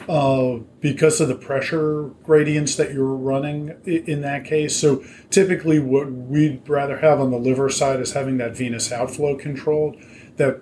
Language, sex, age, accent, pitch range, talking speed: English, male, 40-59, American, 125-145 Hz, 170 wpm